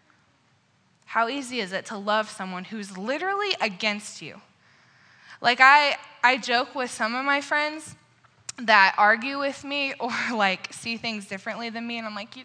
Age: 10-29